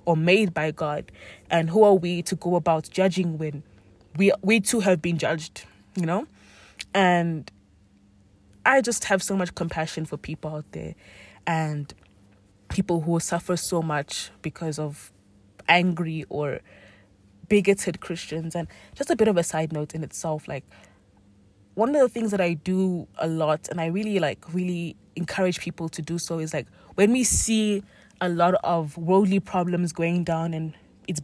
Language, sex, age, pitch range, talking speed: English, female, 20-39, 155-195 Hz, 170 wpm